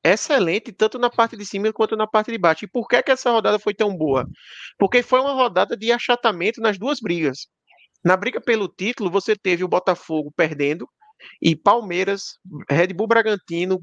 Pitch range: 165-220 Hz